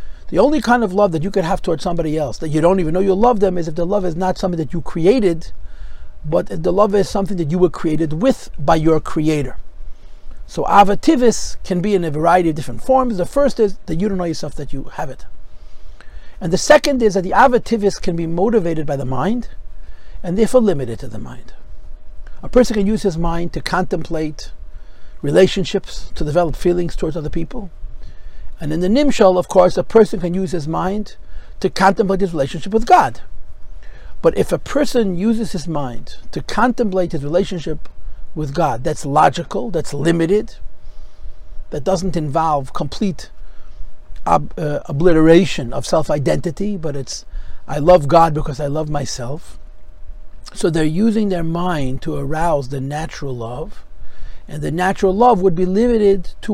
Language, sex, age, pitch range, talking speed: English, male, 50-69, 135-195 Hz, 180 wpm